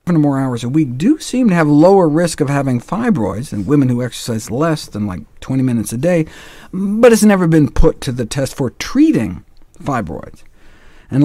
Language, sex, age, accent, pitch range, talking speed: English, male, 50-69, American, 115-160 Hz, 195 wpm